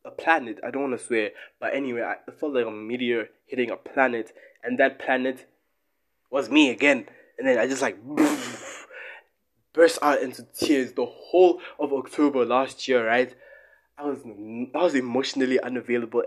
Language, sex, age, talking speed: English, male, 20-39, 165 wpm